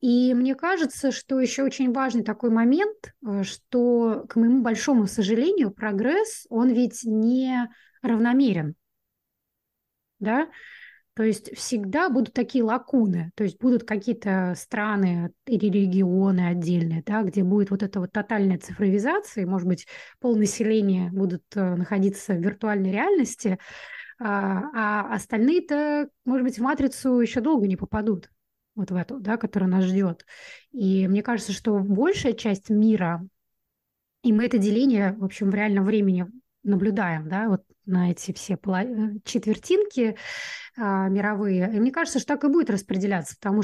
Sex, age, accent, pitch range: female, 20-39, native, 195-245 Hz